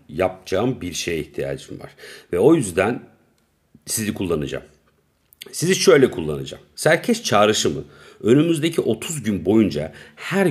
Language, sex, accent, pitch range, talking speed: Turkish, male, native, 100-160 Hz, 115 wpm